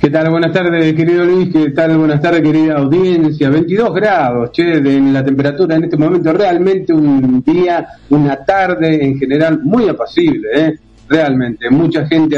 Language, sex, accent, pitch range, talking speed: Spanish, male, Argentinian, 130-165 Hz, 170 wpm